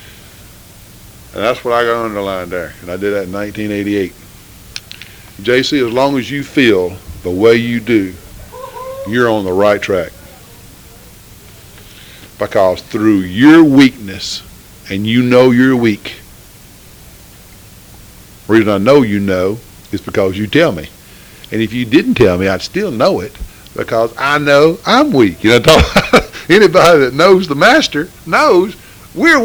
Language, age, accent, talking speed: English, 50-69, American, 145 wpm